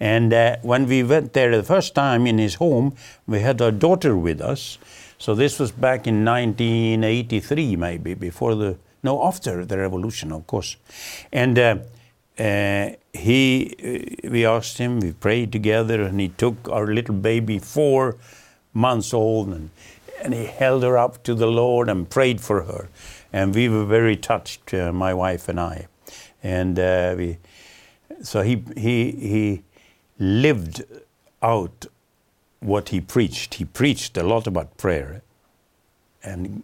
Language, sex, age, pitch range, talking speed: Romanian, male, 60-79, 95-120 Hz, 155 wpm